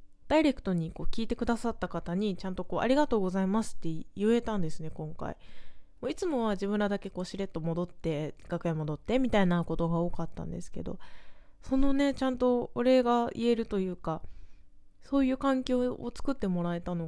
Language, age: Japanese, 20-39